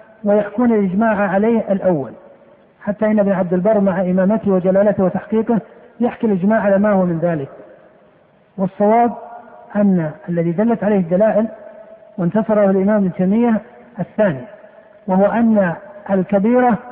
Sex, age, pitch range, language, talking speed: male, 50-69, 190-225 Hz, Arabic, 115 wpm